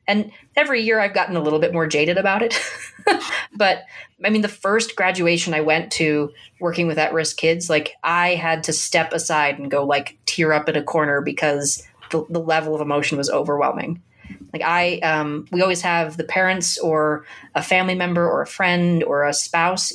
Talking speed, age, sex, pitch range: 195 wpm, 30-49, female, 155-195 Hz